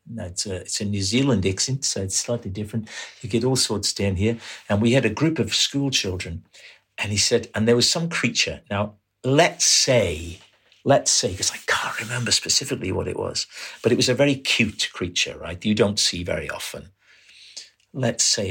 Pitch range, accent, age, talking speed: 95-120 Hz, British, 50-69, 195 wpm